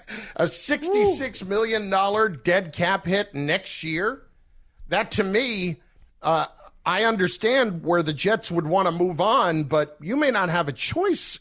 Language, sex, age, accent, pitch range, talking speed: English, male, 50-69, American, 145-195 Hz, 155 wpm